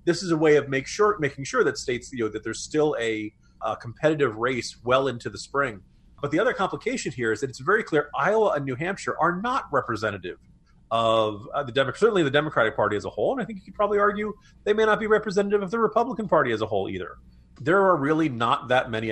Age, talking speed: 30-49, 230 wpm